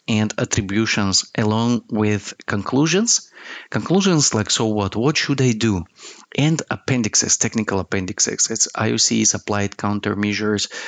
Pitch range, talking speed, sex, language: 105-130 Hz, 115 wpm, male, English